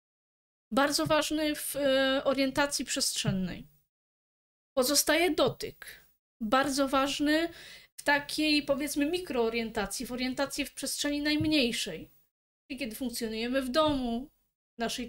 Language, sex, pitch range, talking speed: Polish, female, 245-290 Hz, 100 wpm